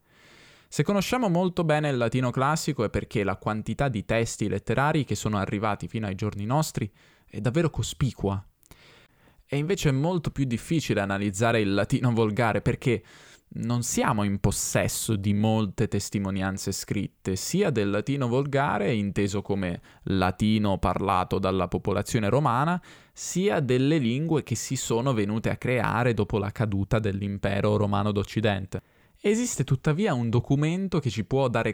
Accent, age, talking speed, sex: native, 20-39, 145 wpm, male